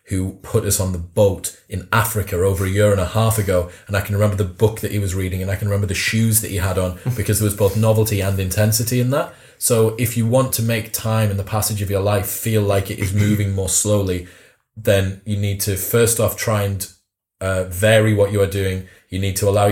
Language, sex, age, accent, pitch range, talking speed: English, male, 30-49, British, 95-115 Hz, 250 wpm